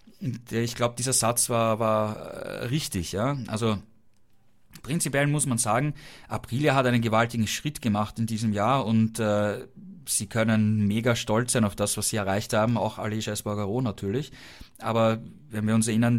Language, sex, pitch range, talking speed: German, male, 110-125 Hz, 165 wpm